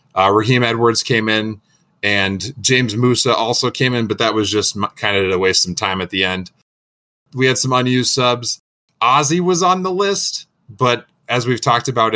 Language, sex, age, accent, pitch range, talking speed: English, male, 20-39, American, 110-140 Hz, 190 wpm